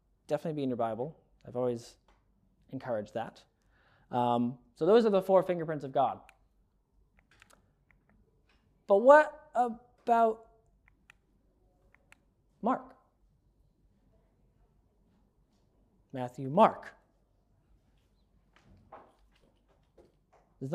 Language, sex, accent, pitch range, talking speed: English, male, American, 120-155 Hz, 70 wpm